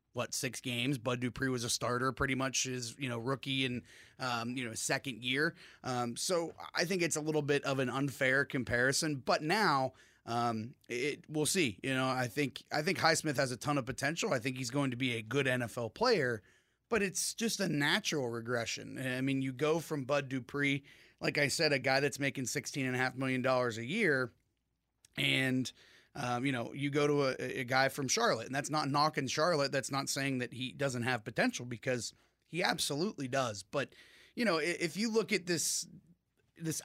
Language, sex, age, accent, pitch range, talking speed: English, male, 30-49, American, 125-150 Hz, 205 wpm